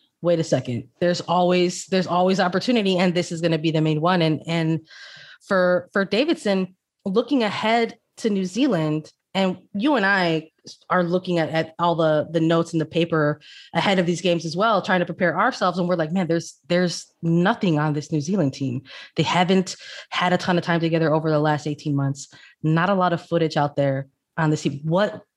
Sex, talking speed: female, 210 wpm